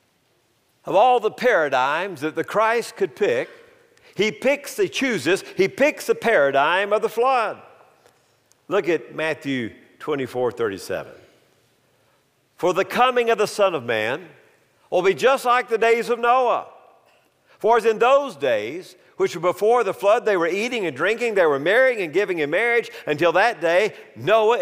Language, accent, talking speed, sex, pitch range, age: English, American, 165 wpm, male, 180-265 Hz, 50-69